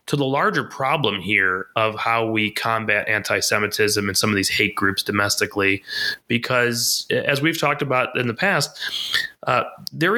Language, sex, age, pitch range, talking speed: English, male, 30-49, 110-130 Hz, 160 wpm